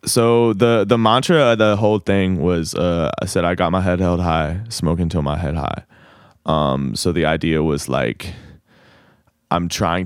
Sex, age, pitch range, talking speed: male, 20-39, 85-110 Hz, 185 wpm